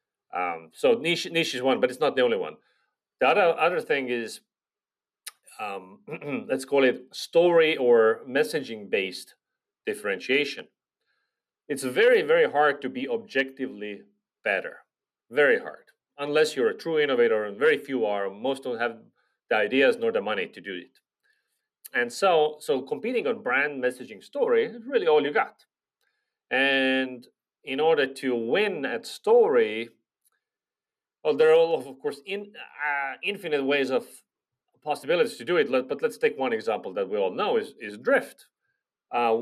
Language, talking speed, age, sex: Finnish, 160 wpm, 40-59, male